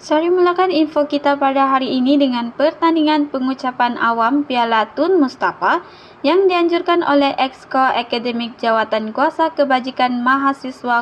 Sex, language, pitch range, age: female, Malay, 230-300 Hz, 20-39